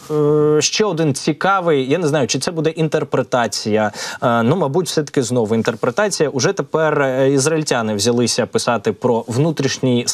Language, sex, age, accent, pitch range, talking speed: Ukrainian, male, 20-39, native, 125-170 Hz, 140 wpm